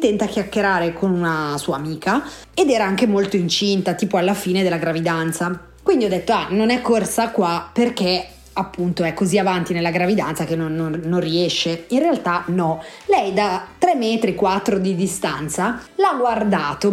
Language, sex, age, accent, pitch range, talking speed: Italian, female, 30-49, native, 185-235 Hz, 170 wpm